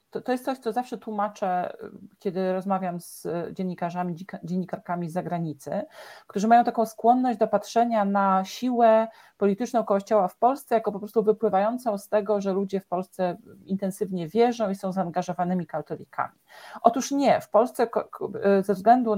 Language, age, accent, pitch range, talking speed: Polish, 40-59, native, 185-230 Hz, 155 wpm